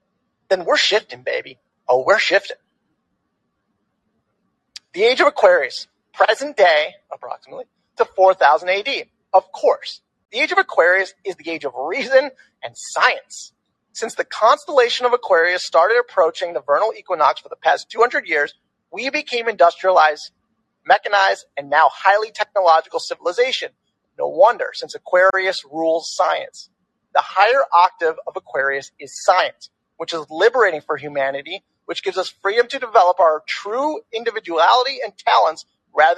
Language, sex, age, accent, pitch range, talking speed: English, male, 30-49, American, 175-280 Hz, 140 wpm